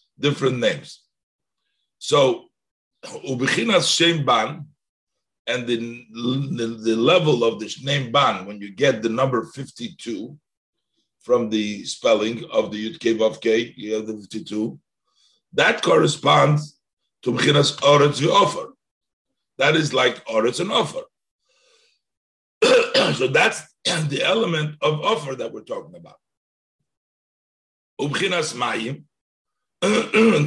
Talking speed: 100 wpm